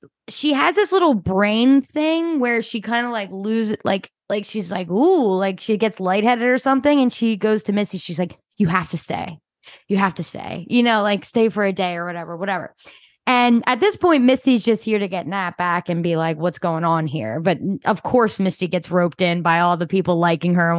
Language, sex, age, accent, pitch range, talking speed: English, female, 10-29, American, 185-235 Hz, 230 wpm